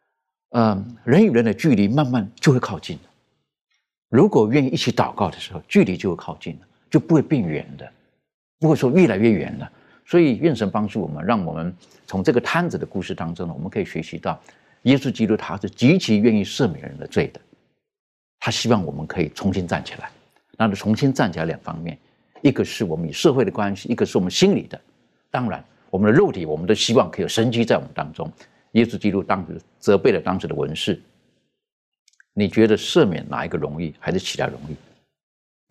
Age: 50-69